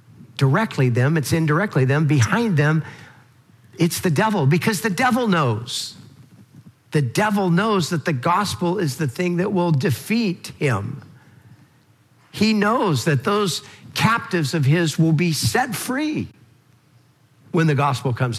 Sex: male